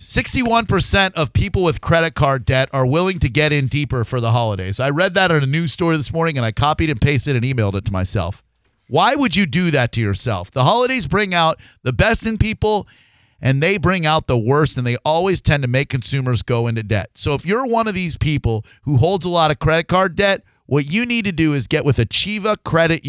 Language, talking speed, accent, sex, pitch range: English, 235 wpm, American, male, 120-165 Hz